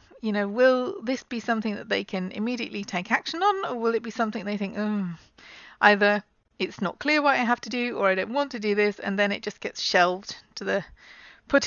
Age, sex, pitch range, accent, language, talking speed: 30-49, female, 195-245 Hz, British, English, 230 wpm